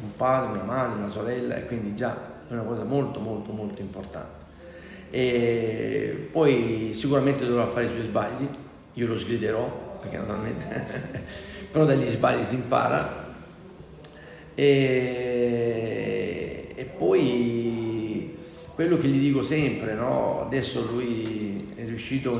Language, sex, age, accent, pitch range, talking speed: Italian, male, 50-69, native, 110-130 Hz, 125 wpm